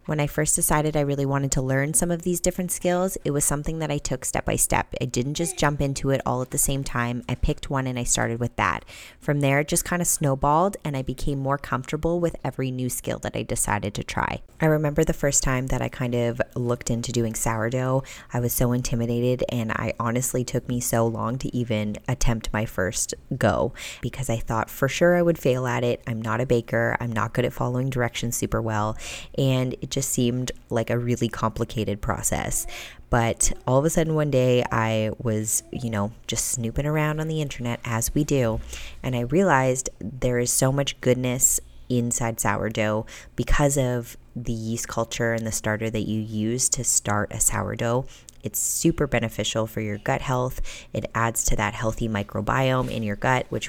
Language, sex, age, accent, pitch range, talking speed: English, female, 20-39, American, 115-140 Hz, 210 wpm